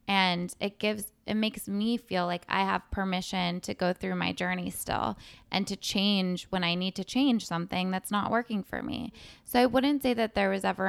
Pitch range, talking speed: 180-205 Hz, 215 wpm